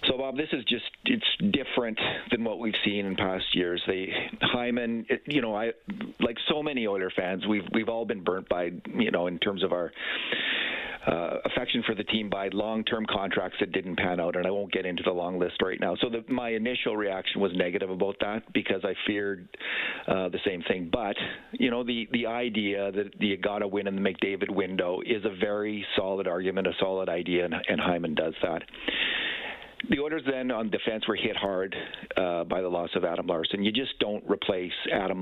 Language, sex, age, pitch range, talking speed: English, male, 40-59, 95-115 Hz, 210 wpm